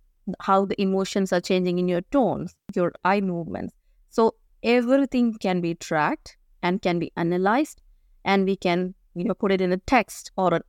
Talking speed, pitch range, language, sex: 170 wpm, 175-220 Hz, English, female